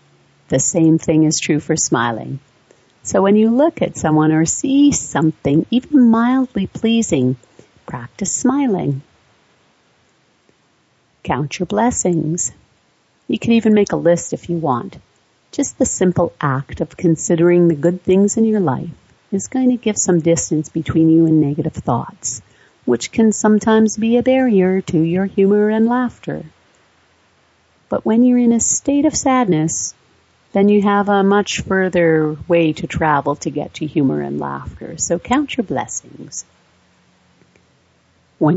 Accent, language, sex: American, English, female